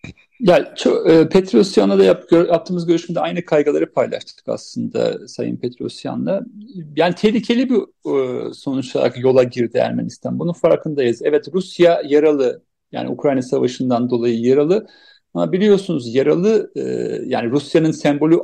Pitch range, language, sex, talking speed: 140-195 Hz, Turkish, male, 115 wpm